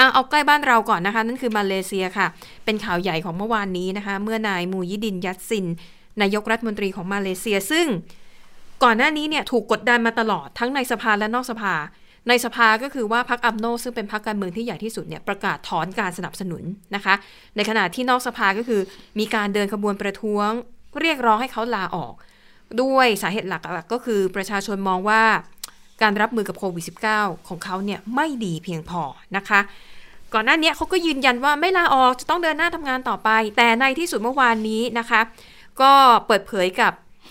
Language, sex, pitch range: Thai, female, 190-230 Hz